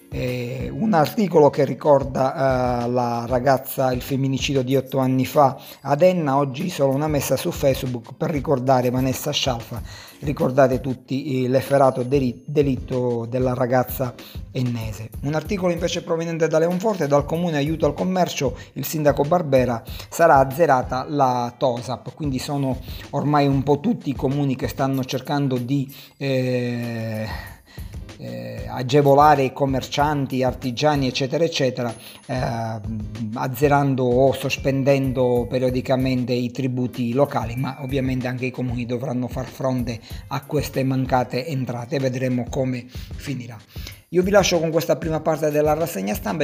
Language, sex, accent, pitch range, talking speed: Italian, male, native, 125-145 Hz, 135 wpm